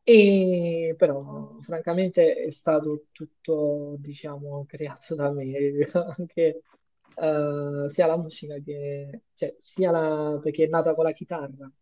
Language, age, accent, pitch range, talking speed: Italian, 20-39, native, 150-205 Hz, 125 wpm